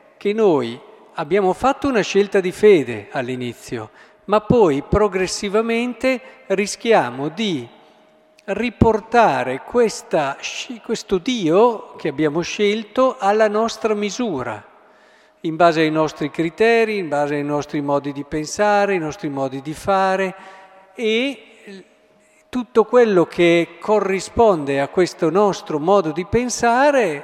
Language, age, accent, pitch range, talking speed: Italian, 50-69, native, 145-210 Hz, 110 wpm